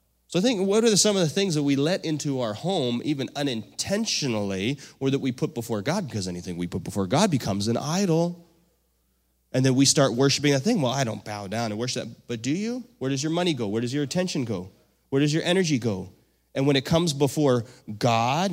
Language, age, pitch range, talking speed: English, 30-49, 110-150 Hz, 230 wpm